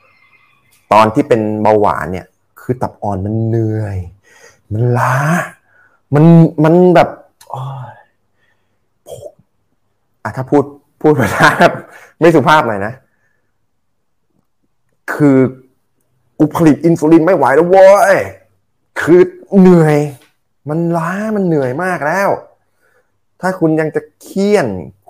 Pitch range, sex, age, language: 100-145 Hz, male, 20-39, Thai